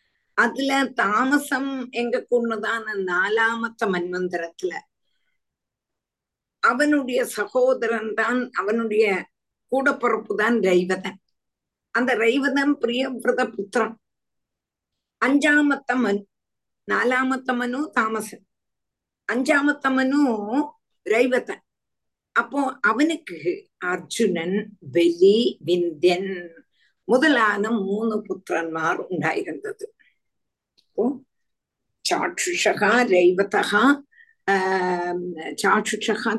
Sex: female